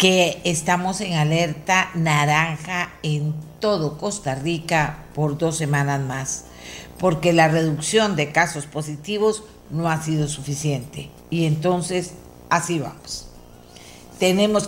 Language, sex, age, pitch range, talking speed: Spanish, female, 50-69, 145-180 Hz, 115 wpm